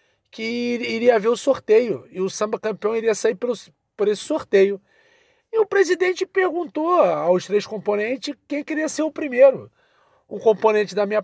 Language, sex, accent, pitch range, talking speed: Portuguese, male, Brazilian, 200-315 Hz, 160 wpm